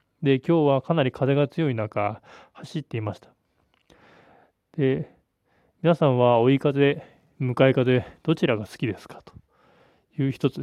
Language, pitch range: Japanese, 115-150 Hz